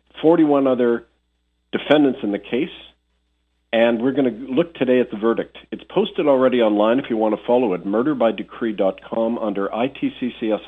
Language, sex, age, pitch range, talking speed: English, male, 50-69, 100-125 Hz, 155 wpm